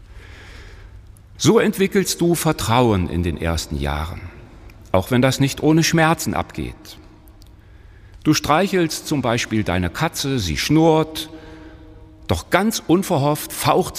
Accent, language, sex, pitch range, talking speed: German, German, male, 95-155 Hz, 115 wpm